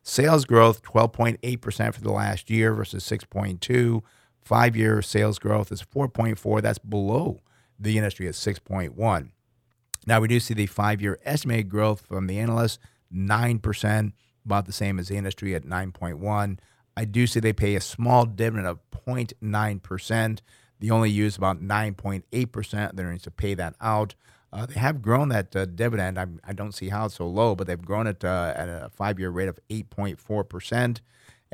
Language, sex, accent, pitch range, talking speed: English, male, American, 95-115 Hz, 165 wpm